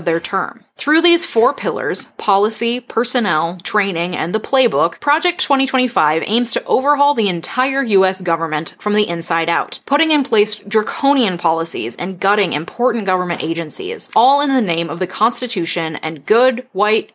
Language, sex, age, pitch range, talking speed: English, female, 20-39, 180-250 Hz, 160 wpm